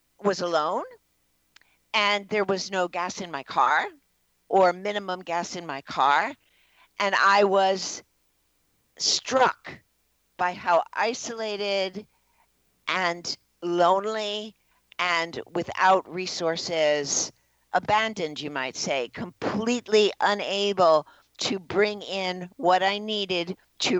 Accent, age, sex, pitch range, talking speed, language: American, 50-69, female, 165-200 Hz, 105 wpm, English